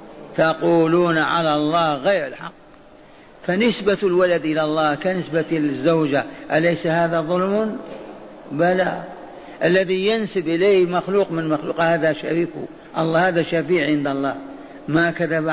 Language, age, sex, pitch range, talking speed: Arabic, 50-69, male, 155-190 Hz, 115 wpm